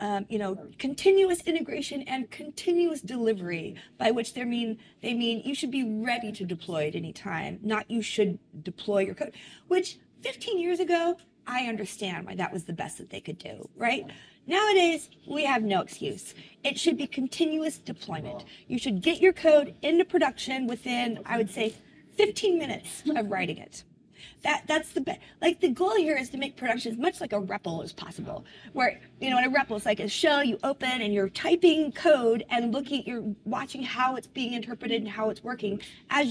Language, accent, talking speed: Croatian, American, 195 wpm